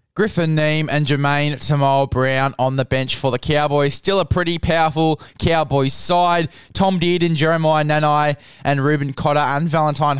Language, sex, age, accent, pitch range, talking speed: English, male, 20-39, Australian, 135-170 Hz, 155 wpm